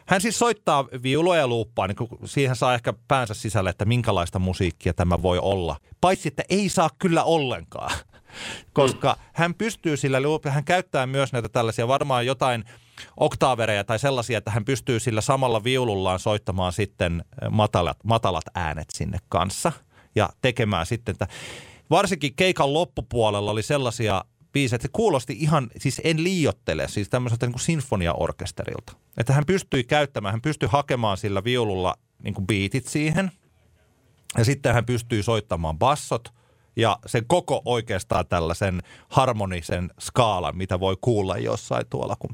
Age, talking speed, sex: 30-49, 145 wpm, male